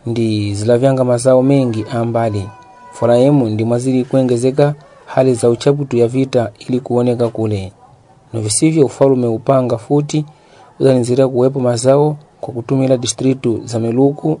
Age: 40-59